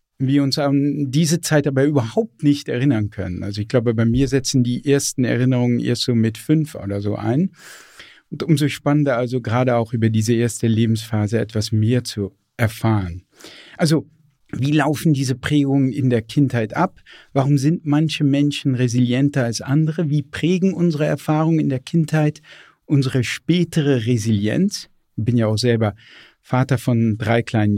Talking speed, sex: 160 wpm, male